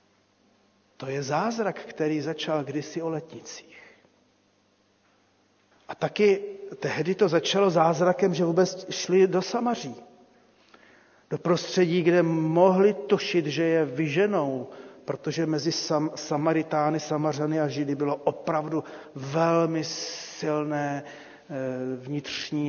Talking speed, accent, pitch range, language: 105 wpm, native, 150-205 Hz, Czech